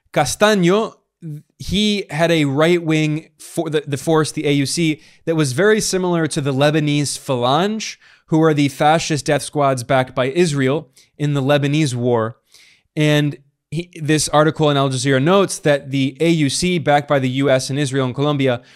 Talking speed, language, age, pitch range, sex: 165 wpm, English, 20-39, 135-165 Hz, male